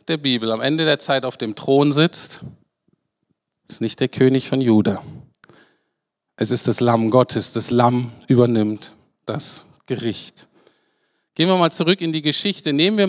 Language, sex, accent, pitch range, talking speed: German, male, German, 135-180 Hz, 160 wpm